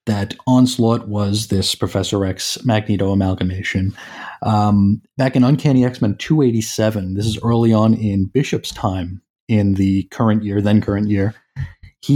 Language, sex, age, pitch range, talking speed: English, male, 30-49, 100-125 Hz, 145 wpm